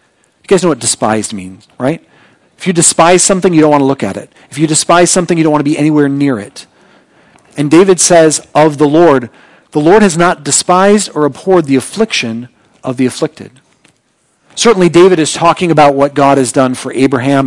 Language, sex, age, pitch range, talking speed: English, male, 40-59, 130-165 Hz, 205 wpm